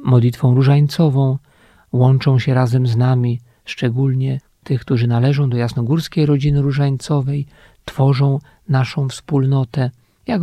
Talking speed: 110 wpm